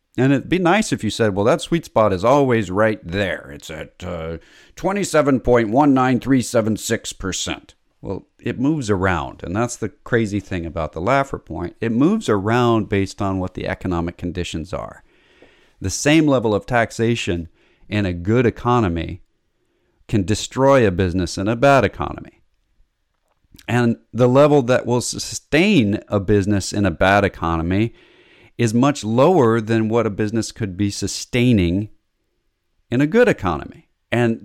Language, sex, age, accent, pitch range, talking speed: English, male, 50-69, American, 95-125 Hz, 150 wpm